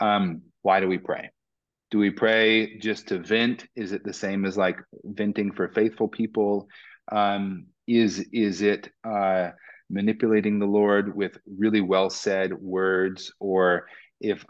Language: English